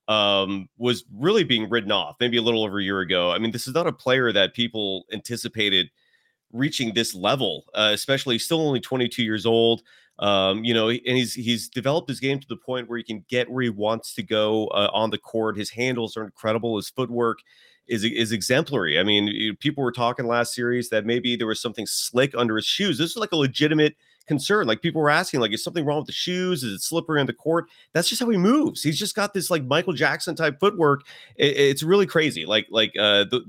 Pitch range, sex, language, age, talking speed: 110-145 Hz, male, English, 30-49, 230 wpm